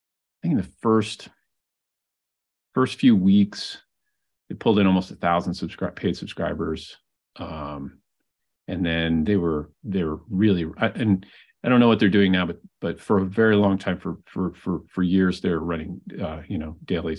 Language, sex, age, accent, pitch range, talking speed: English, male, 40-59, American, 80-100 Hz, 180 wpm